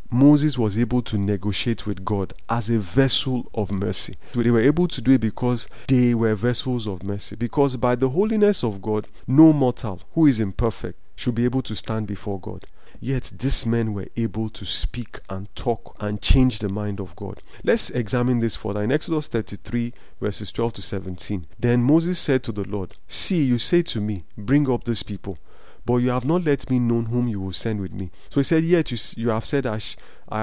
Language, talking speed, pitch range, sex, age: English, 210 wpm, 105-130 Hz, male, 40-59